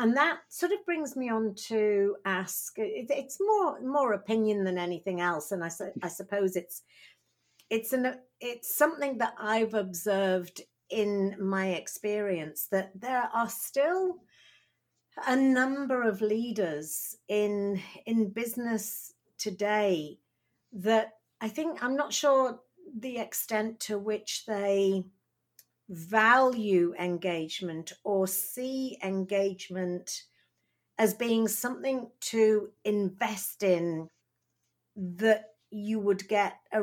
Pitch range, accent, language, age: 195-255 Hz, British, English, 60-79